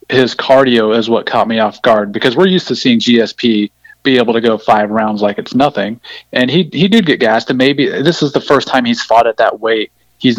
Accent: American